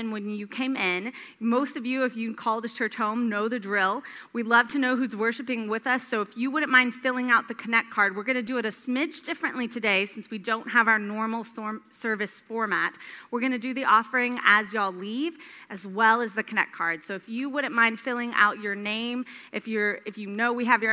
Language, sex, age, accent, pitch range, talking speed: English, female, 30-49, American, 205-250 Hz, 235 wpm